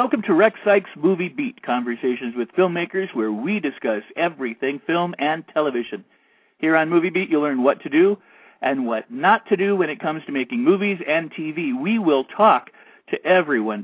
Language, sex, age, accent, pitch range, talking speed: English, male, 50-69, American, 135-185 Hz, 185 wpm